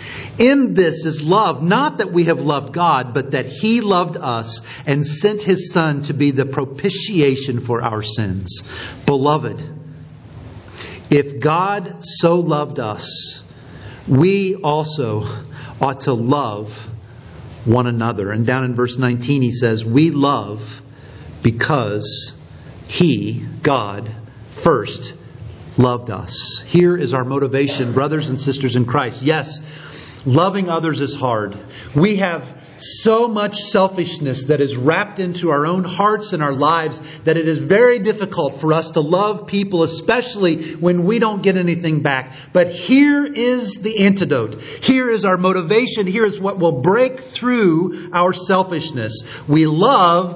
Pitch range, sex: 130-185 Hz, male